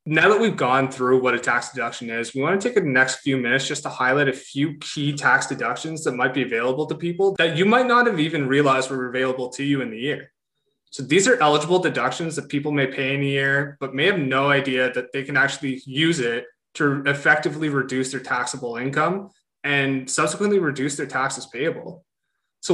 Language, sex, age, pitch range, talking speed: English, male, 20-39, 130-160 Hz, 215 wpm